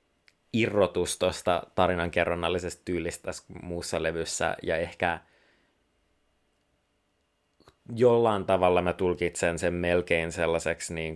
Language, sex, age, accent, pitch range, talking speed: Finnish, male, 30-49, native, 80-95 Hz, 90 wpm